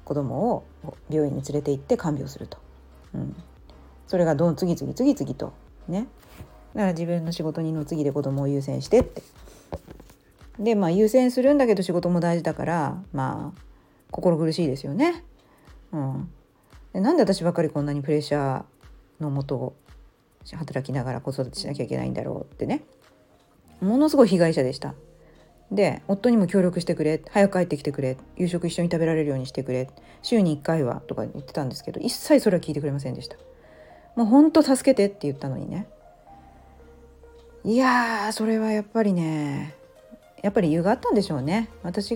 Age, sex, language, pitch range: 40-59, female, Japanese, 140-215 Hz